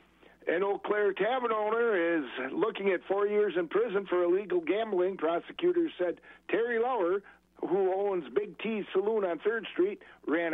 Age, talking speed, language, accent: 60-79, 160 wpm, English, American